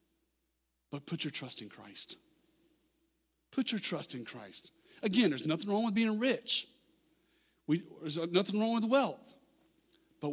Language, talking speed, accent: English, 140 wpm, American